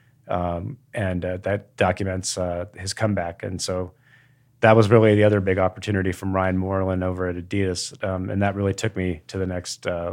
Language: English